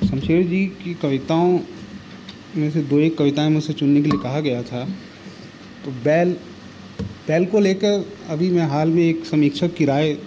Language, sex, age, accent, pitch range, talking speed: Hindi, male, 40-59, native, 155-200 Hz, 170 wpm